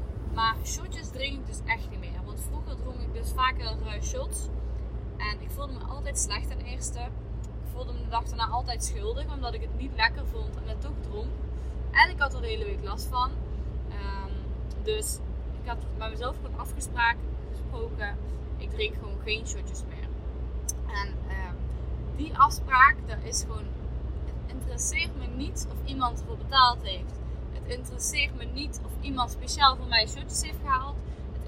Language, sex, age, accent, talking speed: Dutch, female, 10-29, Dutch, 175 wpm